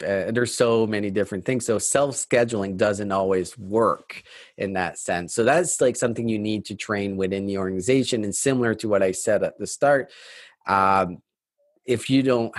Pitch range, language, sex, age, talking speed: 95-120 Hz, English, male, 30-49, 180 wpm